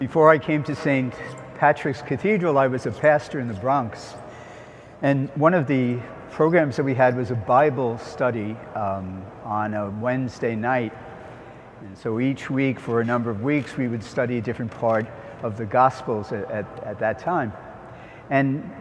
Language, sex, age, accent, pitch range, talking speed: English, male, 60-79, American, 120-150 Hz, 175 wpm